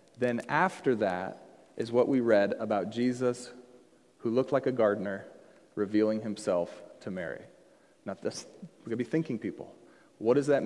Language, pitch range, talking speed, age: English, 125-180 Hz, 165 wpm, 40-59